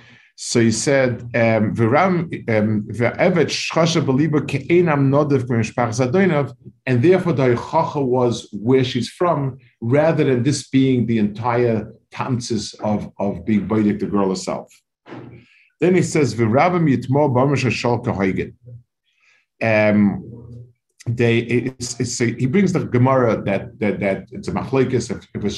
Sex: male